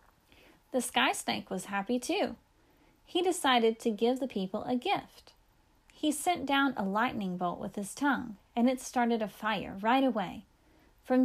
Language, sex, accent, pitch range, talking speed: English, female, American, 215-290 Hz, 160 wpm